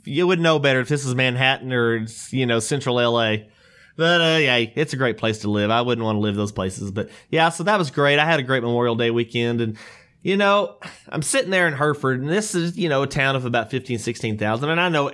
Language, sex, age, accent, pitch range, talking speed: English, male, 30-49, American, 120-160 Hz, 260 wpm